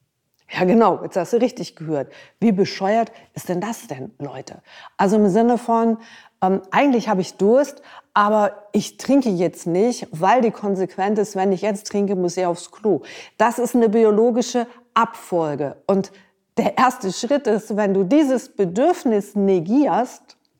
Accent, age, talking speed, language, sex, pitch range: German, 50-69, 160 wpm, German, female, 170-220 Hz